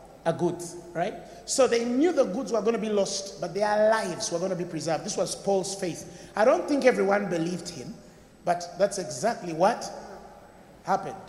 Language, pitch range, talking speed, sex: English, 175-250 Hz, 185 wpm, male